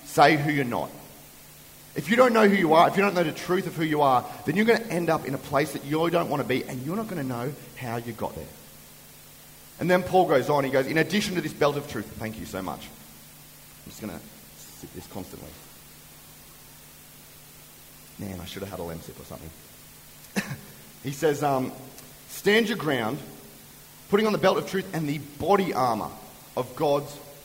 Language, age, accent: English, 30-49, Australian